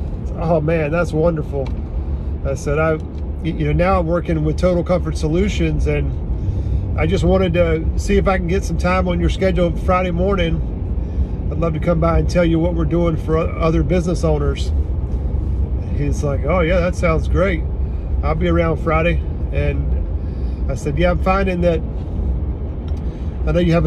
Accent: American